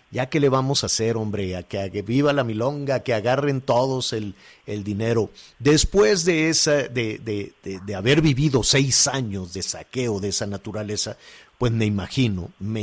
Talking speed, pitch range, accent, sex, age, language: 180 wpm, 105-140 Hz, Mexican, male, 50-69, Spanish